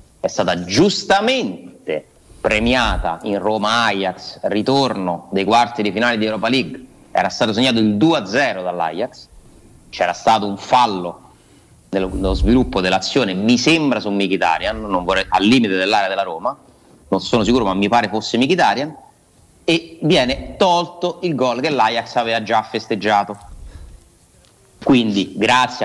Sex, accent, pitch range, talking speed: male, native, 100-140 Hz, 135 wpm